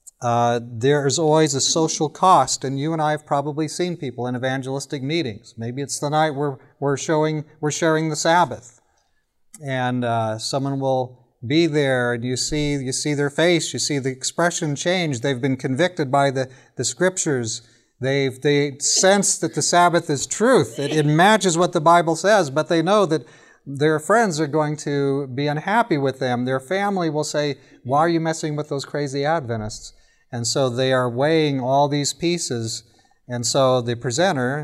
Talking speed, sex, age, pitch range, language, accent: 185 wpm, male, 40-59, 125-155 Hz, English, American